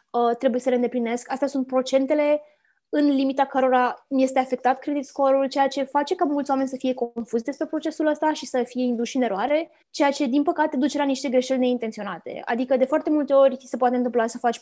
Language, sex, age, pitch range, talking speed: Romanian, female, 20-39, 245-285 Hz, 215 wpm